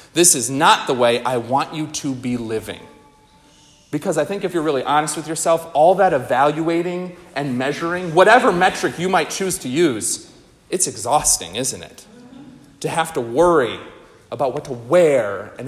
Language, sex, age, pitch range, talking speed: English, male, 30-49, 135-185 Hz, 170 wpm